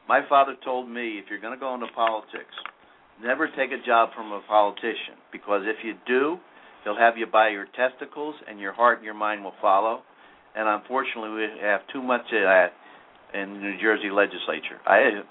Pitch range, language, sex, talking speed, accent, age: 100-120 Hz, English, male, 200 wpm, American, 50-69